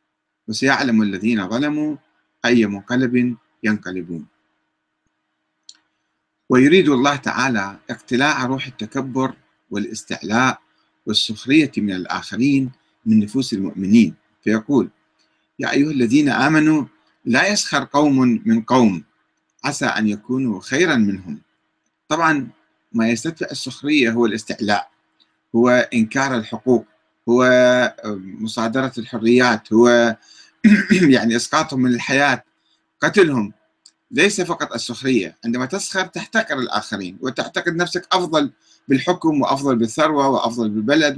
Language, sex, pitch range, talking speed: Arabic, male, 105-155 Hz, 100 wpm